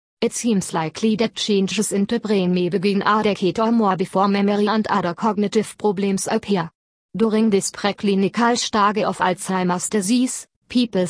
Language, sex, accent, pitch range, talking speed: English, female, German, 185-220 Hz, 155 wpm